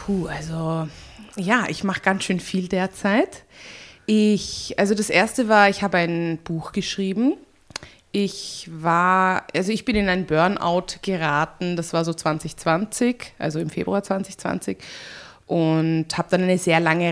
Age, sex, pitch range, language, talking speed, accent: 20-39, female, 160-195 Hz, German, 145 wpm, German